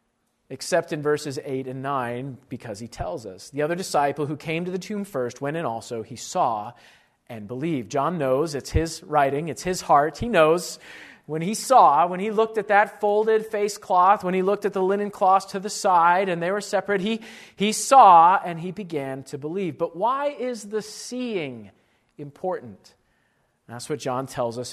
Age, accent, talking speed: 40-59, American, 195 wpm